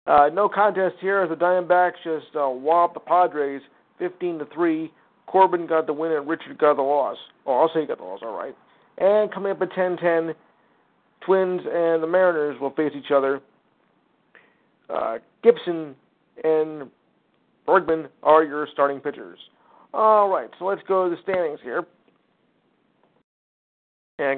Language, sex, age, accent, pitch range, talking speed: English, male, 50-69, American, 150-185 Hz, 155 wpm